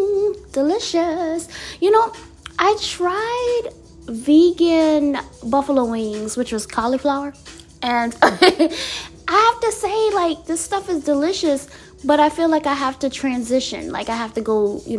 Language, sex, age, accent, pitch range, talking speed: English, female, 20-39, American, 235-335 Hz, 140 wpm